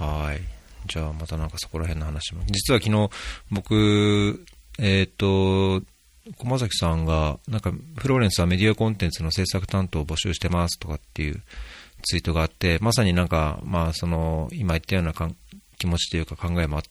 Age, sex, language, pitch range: 40-59, male, Japanese, 75-95 Hz